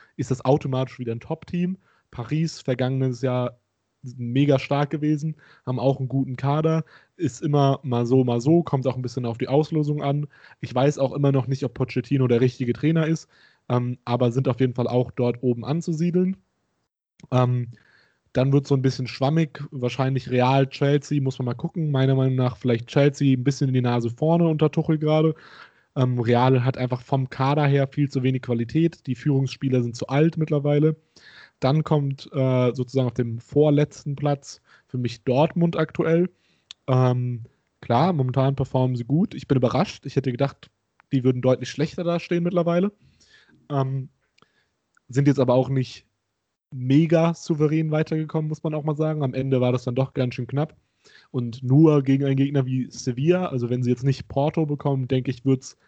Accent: German